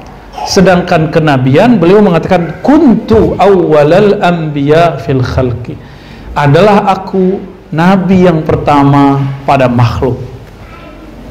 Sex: male